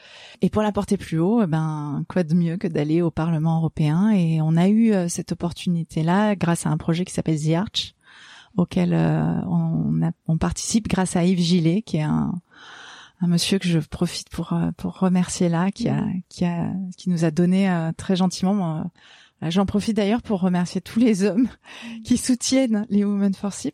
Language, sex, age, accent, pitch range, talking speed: French, female, 30-49, French, 175-205 Hz, 200 wpm